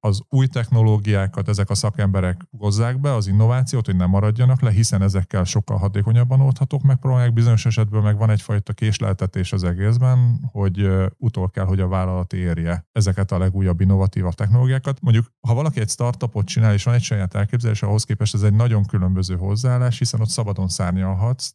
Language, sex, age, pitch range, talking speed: Hungarian, male, 30-49, 95-115 Hz, 175 wpm